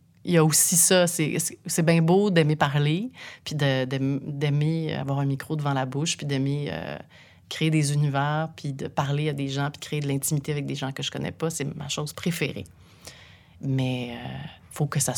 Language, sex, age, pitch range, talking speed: French, female, 30-49, 140-165 Hz, 220 wpm